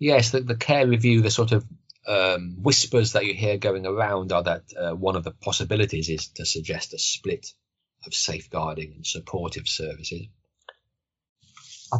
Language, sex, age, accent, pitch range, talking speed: English, male, 30-49, British, 100-130 Hz, 165 wpm